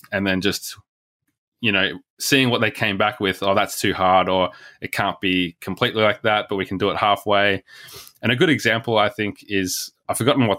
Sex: male